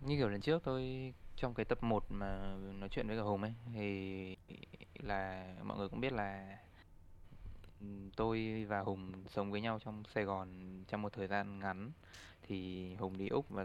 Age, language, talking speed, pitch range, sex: 20-39, Vietnamese, 185 wpm, 95-115 Hz, male